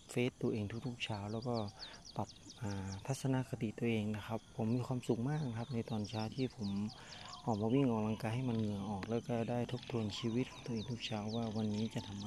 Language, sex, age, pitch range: Thai, male, 30-49, 110-125 Hz